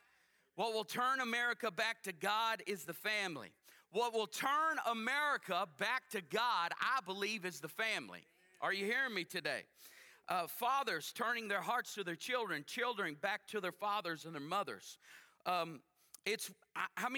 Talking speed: 160 wpm